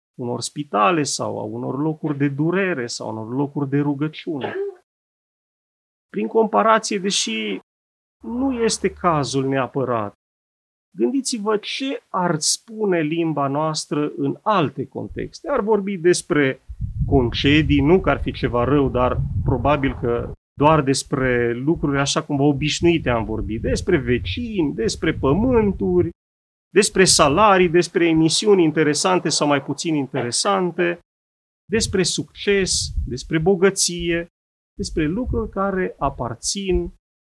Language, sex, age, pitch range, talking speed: Romanian, male, 30-49, 130-195 Hz, 120 wpm